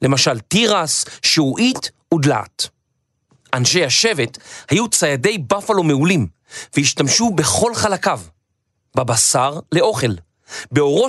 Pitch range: 125-180 Hz